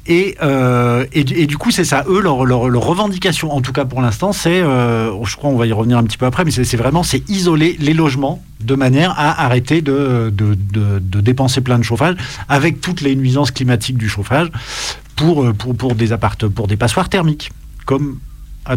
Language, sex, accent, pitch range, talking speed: French, male, French, 120-155 Hz, 215 wpm